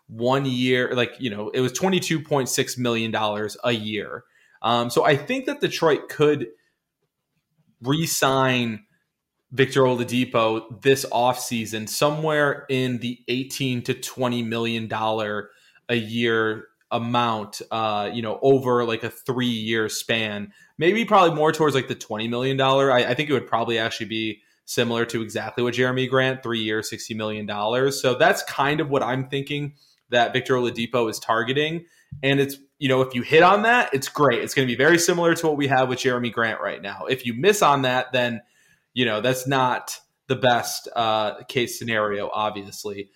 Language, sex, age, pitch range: English, male, 20-39, 115-135 Hz